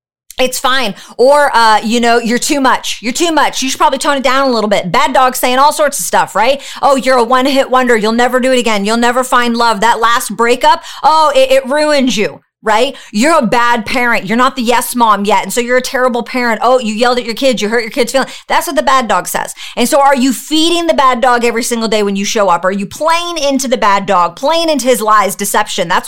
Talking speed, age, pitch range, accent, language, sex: 260 wpm, 40-59, 215-270 Hz, American, English, female